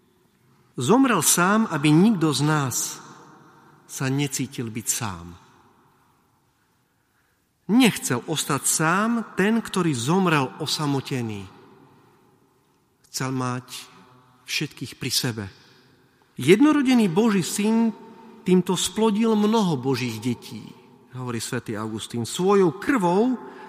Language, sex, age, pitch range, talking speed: Slovak, male, 40-59, 125-180 Hz, 90 wpm